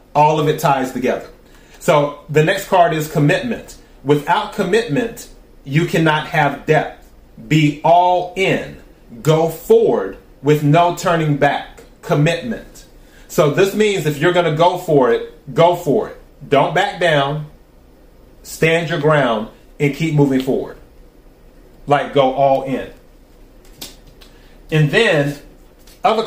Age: 30-49